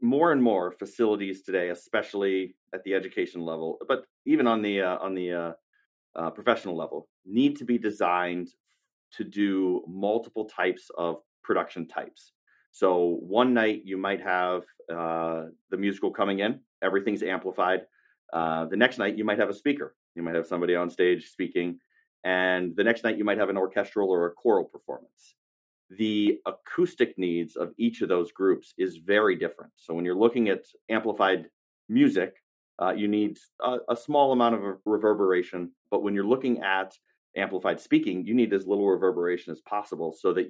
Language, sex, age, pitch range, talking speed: English, male, 30-49, 90-120 Hz, 175 wpm